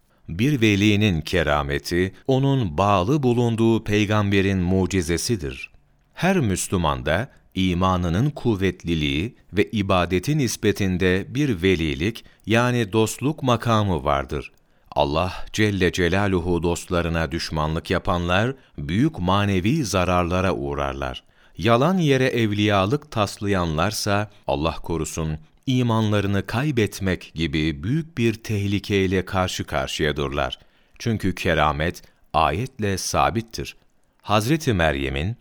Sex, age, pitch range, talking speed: male, 40-59, 90-110 Hz, 90 wpm